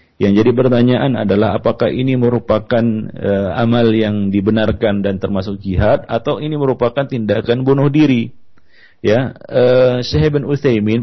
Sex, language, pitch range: male, Malay, 110-130 Hz